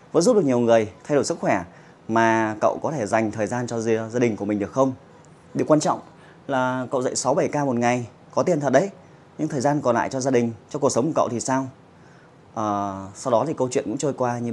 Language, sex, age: Vietnamese, male, 20-39